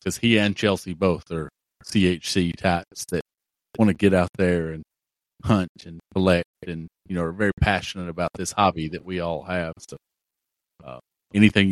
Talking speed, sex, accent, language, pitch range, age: 175 wpm, male, American, English, 85-95 Hz, 50-69